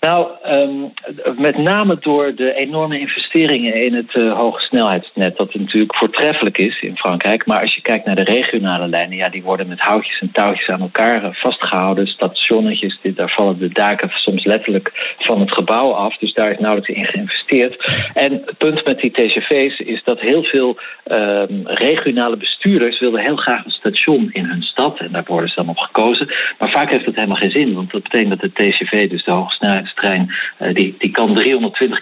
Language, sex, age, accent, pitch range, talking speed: Dutch, male, 50-69, Dutch, 100-140 Hz, 195 wpm